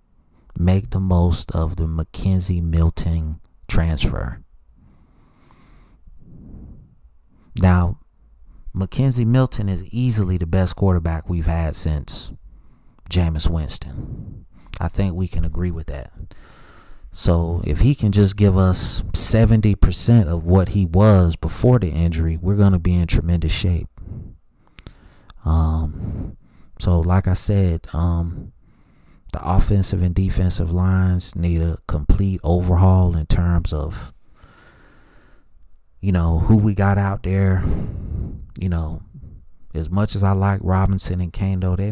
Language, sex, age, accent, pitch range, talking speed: English, male, 30-49, American, 80-100 Hz, 120 wpm